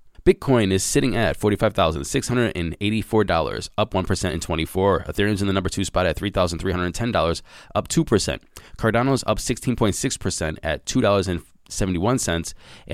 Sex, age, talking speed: male, 20-39, 110 wpm